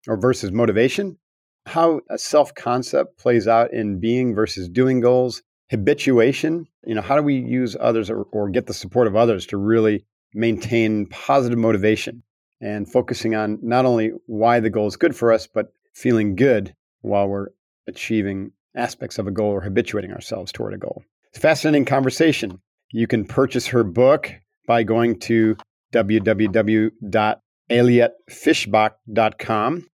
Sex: male